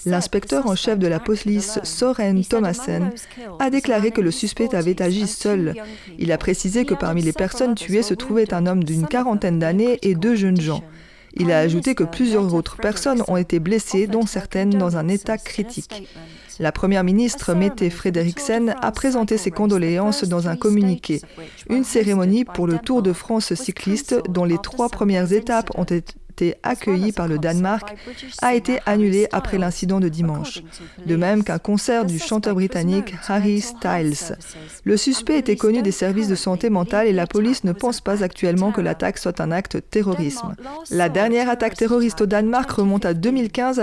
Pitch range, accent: 180-225 Hz, French